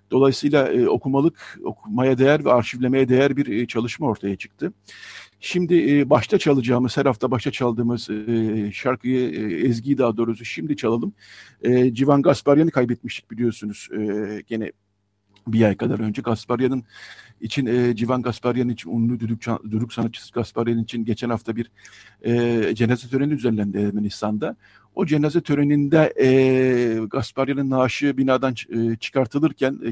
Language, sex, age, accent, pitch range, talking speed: Turkish, male, 50-69, native, 110-130 Hz, 140 wpm